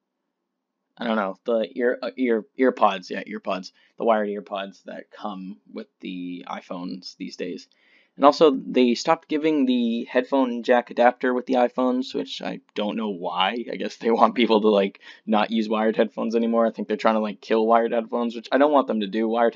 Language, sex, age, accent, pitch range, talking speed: English, male, 10-29, American, 105-120 Hz, 200 wpm